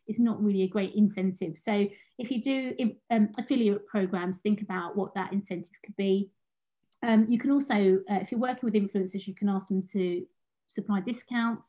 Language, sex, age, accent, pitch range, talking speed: English, female, 30-49, British, 195-230 Hz, 190 wpm